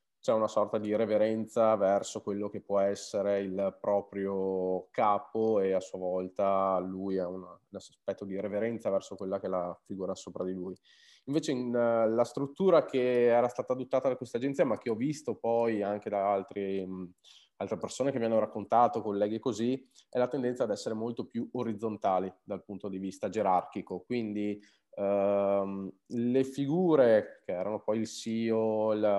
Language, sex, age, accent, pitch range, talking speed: Italian, male, 20-39, native, 100-120 Hz, 160 wpm